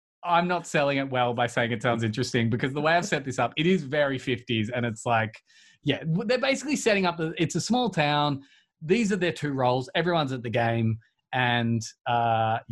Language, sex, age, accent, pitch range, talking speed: English, male, 20-39, Australian, 125-170 Hz, 210 wpm